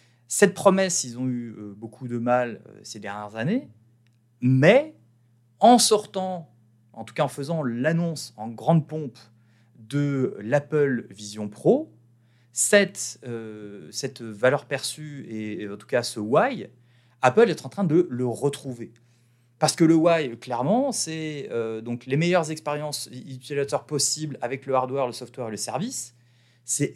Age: 30-49